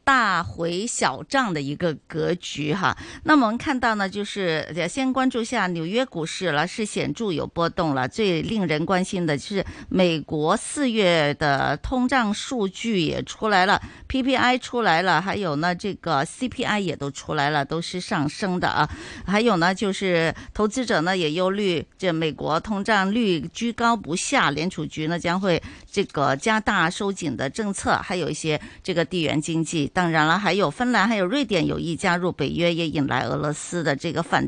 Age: 50-69